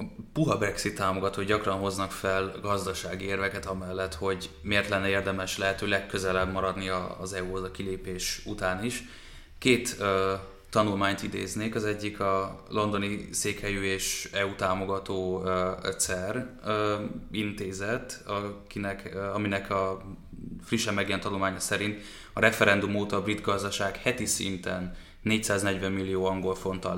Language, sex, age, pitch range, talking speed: Hungarian, male, 20-39, 95-100 Hz, 135 wpm